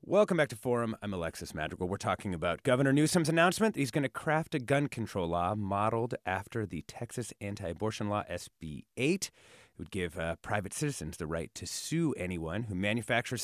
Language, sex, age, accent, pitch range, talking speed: English, male, 30-49, American, 100-145 Hz, 190 wpm